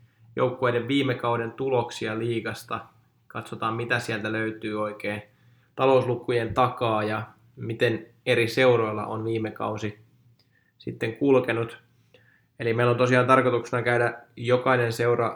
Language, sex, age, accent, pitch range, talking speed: Finnish, male, 20-39, native, 115-125 Hz, 115 wpm